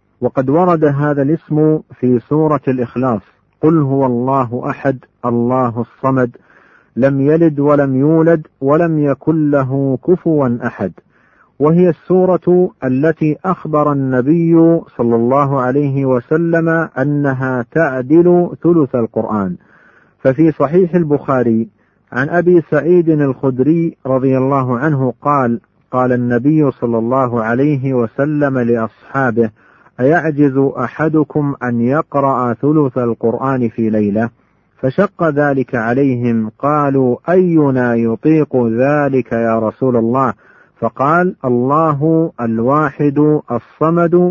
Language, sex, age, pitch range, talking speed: Arabic, male, 50-69, 125-155 Hz, 100 wpm